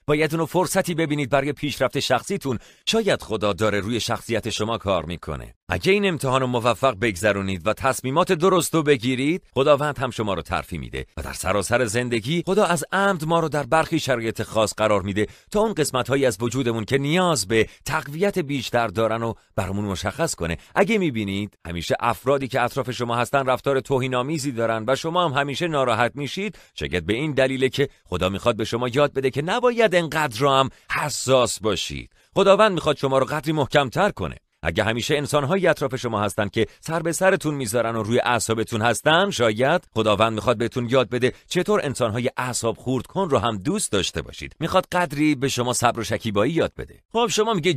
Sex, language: male, Persian